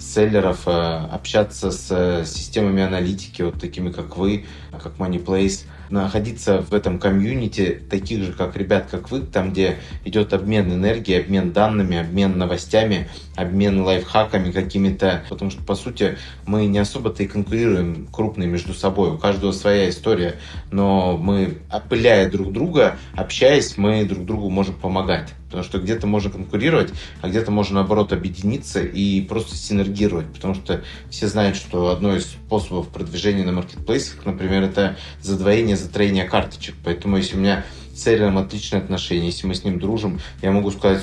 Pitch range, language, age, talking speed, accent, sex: 90-105 Hz, Russian, 20-39, 150 wpm, native, male